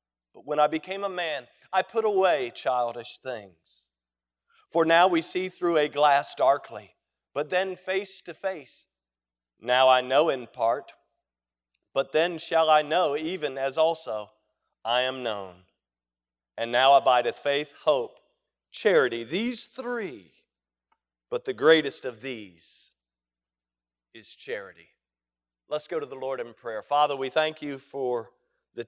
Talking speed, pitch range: 140 wpm, 110-150 Hz